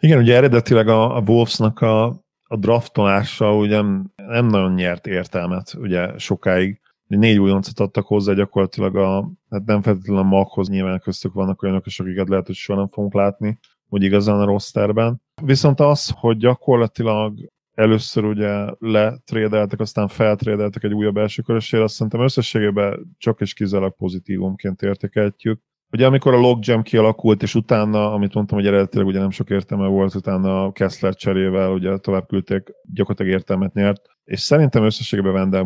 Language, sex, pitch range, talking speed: Hungarian, male, 95-110 Hz, 155 wpm